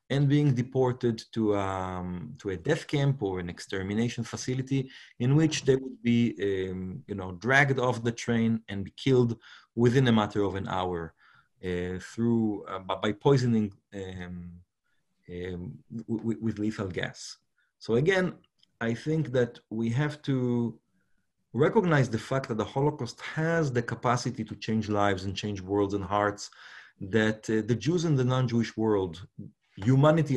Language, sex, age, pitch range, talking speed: English, male, 30-49, 105-130 Hz, 155 wpm